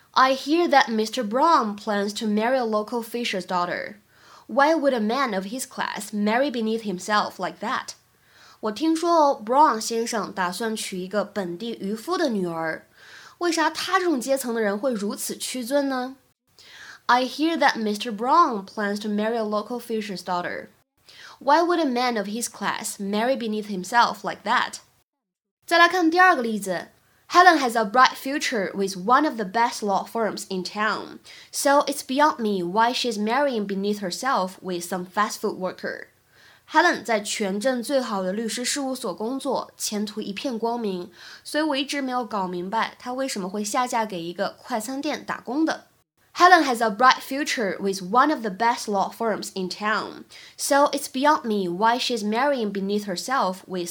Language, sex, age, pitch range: Chinese, female, 20-39, 205-270 Hz